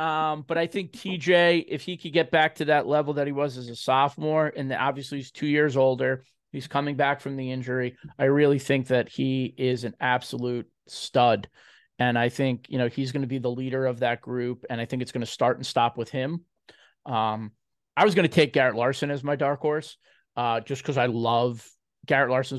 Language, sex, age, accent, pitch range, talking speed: English, male, 30-49, American, 125-150 Hz, 225 wpm